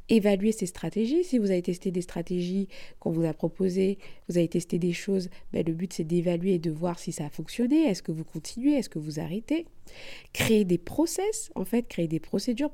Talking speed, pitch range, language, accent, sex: 215 wpm, 170-225 Hz, French, French, female